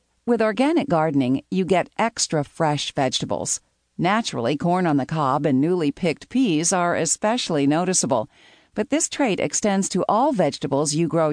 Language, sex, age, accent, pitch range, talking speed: English, female, 50-69, American, 150-215 Hz, 155 wpm